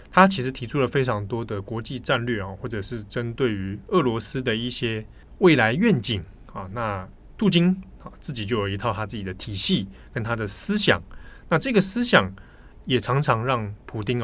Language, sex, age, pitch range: Chinese, male, 20-39, 105-140 Hz